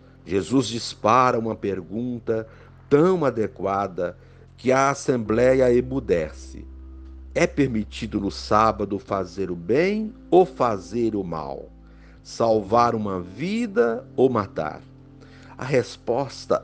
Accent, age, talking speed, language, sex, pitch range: Brazilian, 60-79, 100 wpm, Portuguese, male, 100-130 Hz